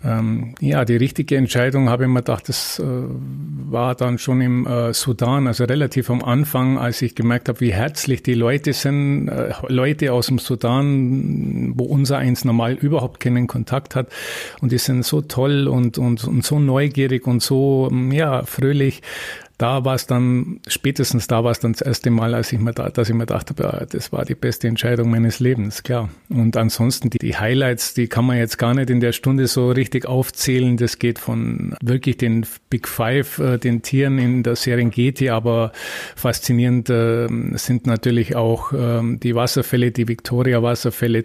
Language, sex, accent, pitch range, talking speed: German, male, Austrian, 120-130 Hz, 175 wpm